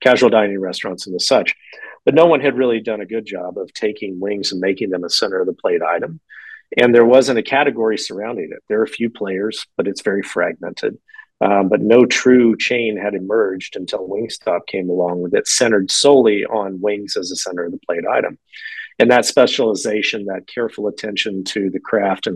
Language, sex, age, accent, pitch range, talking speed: English, male, 40-59, American, 100-135 Hz, 205 wpm